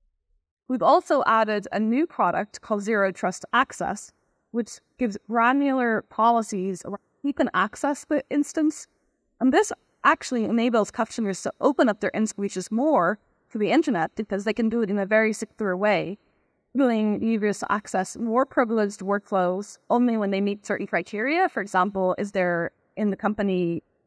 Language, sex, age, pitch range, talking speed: English, female, 20-39, 190-240 Hz, 160 wpm